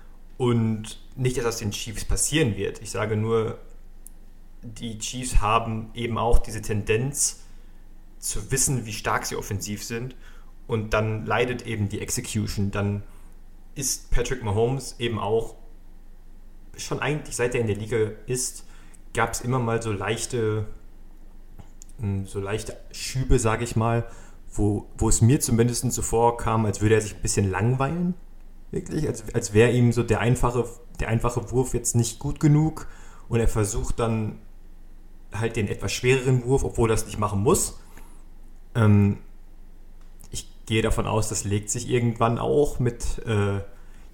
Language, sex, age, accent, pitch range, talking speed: German, male, 30-49, German, 100-120 Hz, 155 wpm